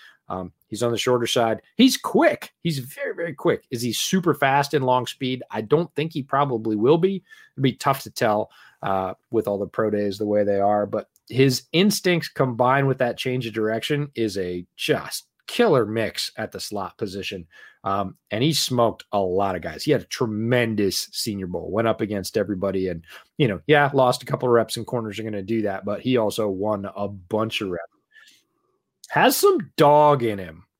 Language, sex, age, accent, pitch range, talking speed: English, male, 30-49, American, 105-150 Hz, 205 wpm